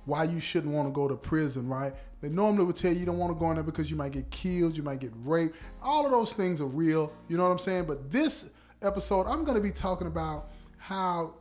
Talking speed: 270 wpm